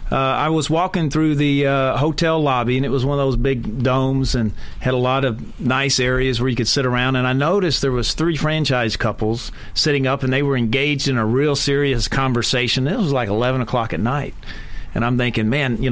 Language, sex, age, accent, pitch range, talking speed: English, male, 40-59, American, 125-150 Hz, 225 wpm